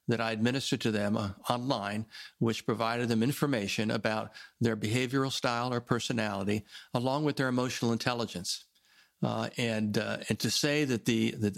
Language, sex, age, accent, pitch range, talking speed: English, male, 50-69, American, 110-125 Hz, 160 wpm